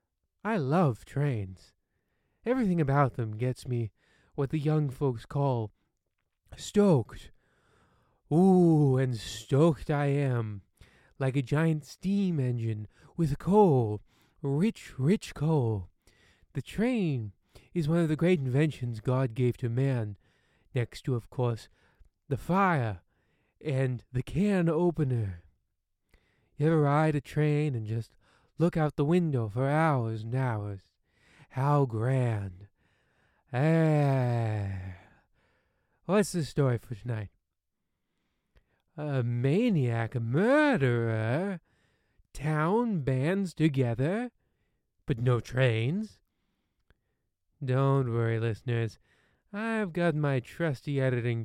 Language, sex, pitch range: English, male, 115-150 Hz